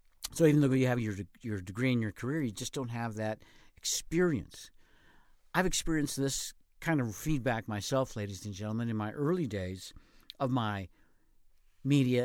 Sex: male